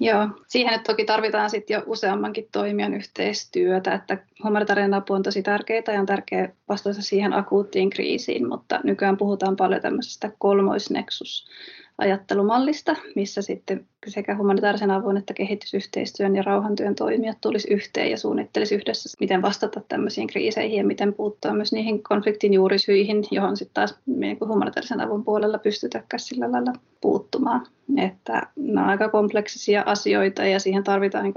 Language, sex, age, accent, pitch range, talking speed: Finnish, female, 30-49, native, 195-220 Hz, 140 wpm